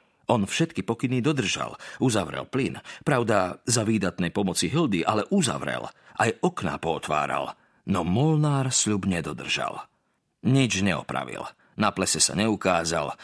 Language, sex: Slovak, male